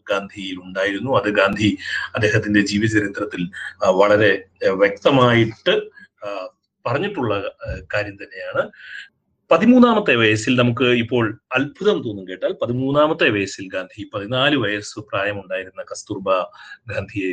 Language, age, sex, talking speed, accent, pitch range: Malayalam, 30-49, male, 90 wpm, native, 105-135 Hz